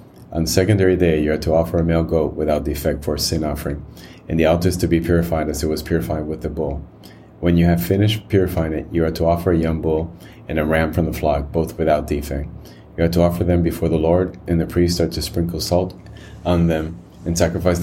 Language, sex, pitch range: English, male, 75-85 Hz